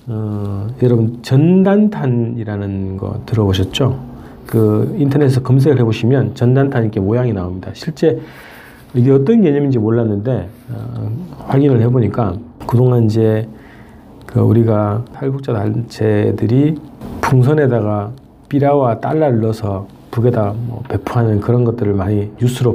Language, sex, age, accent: Korean, male, 40-59, native